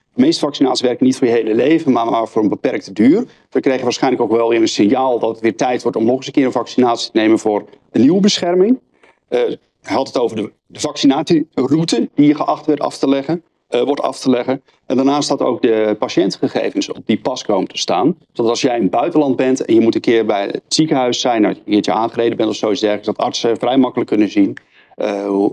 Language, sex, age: Dutch, male, 40-59